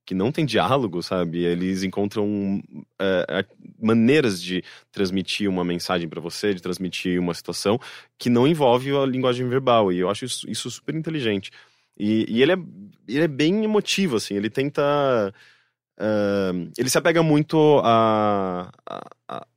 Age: 20-39